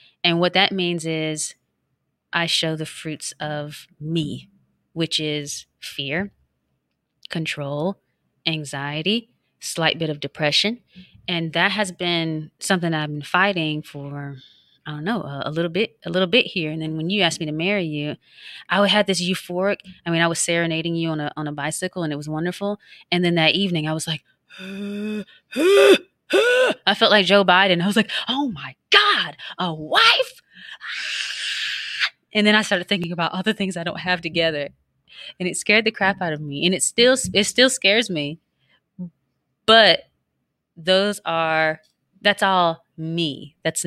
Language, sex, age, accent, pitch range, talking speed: English, female, 20-39, American, 155-200 Hz, 165 wpm